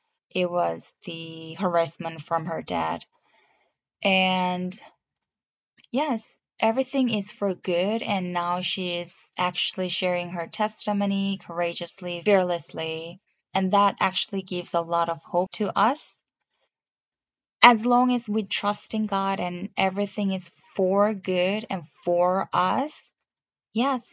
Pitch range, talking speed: 170-210 Hz, 120 wpm